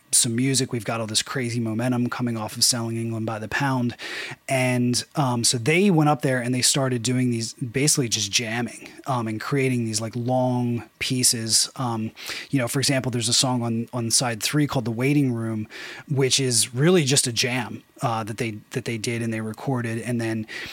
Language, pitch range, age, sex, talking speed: English, 115-140 Hz, 30-49, male, 205 wpm